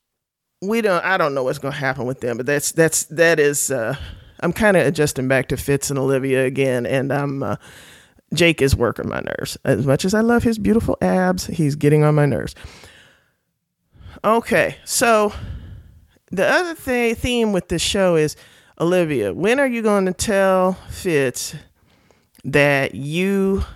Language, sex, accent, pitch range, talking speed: English, male, American, 140-185 Hz, 165 wpm